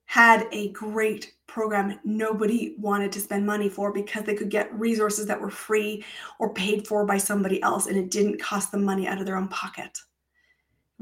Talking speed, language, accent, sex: 195 wpm, English, American, female